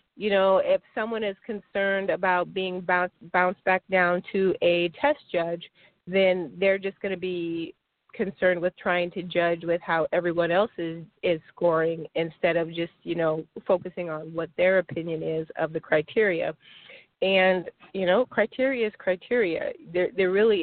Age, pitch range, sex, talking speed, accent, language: 30-49, 170-200 Hz, female, 165 wpm, American, English